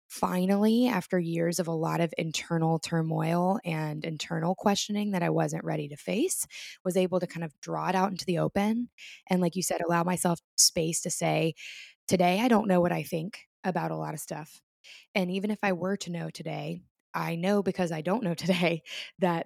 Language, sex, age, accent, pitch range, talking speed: English, female, 20-39, American, 160-185 Hz, 205 wpm